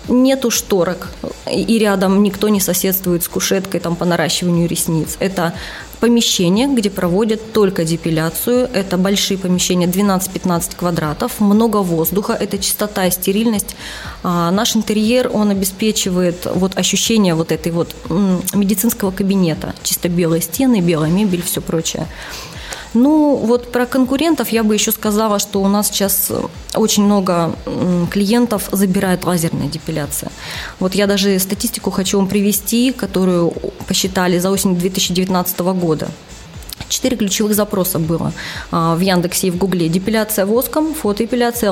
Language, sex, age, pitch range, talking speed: Russian, female, 20-39, 175-215 Hz, 125 wpm